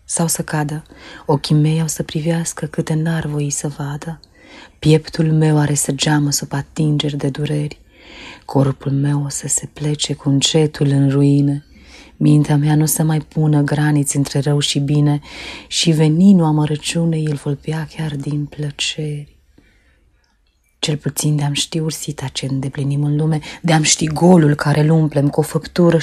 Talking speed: 155 wpm